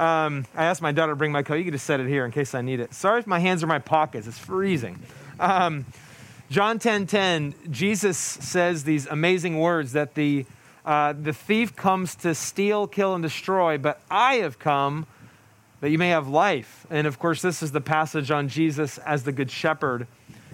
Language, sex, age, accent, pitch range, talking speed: English, male, 30-49, American, 145-175 Hz, 210 wpm